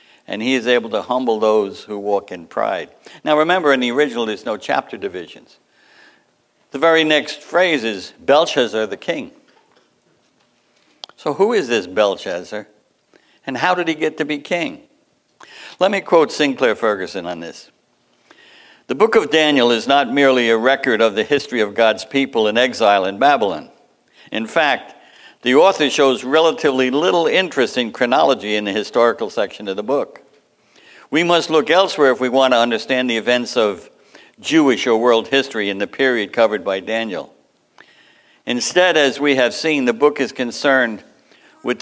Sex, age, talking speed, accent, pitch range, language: male, 60-79, 165 wpm, American, 115-155 Hz, English